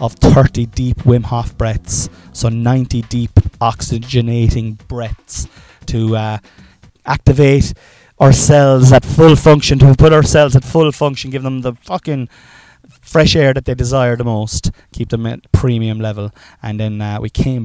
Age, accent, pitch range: 20-39, Irish, 105-130 Hz